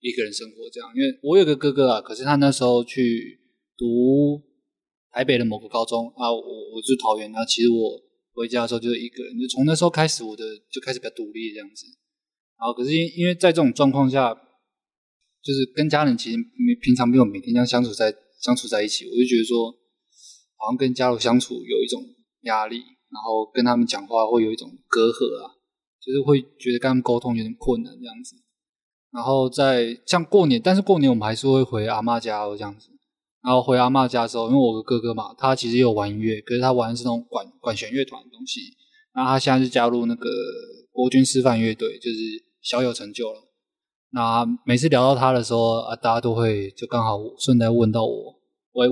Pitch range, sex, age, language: 115-150 Hz, male, 20-39, Chinese